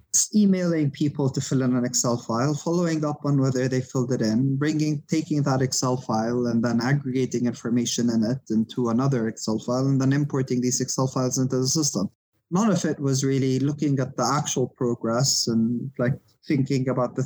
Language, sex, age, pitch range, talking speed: English, male, 20-39, 120-145 Hz, 190 wpm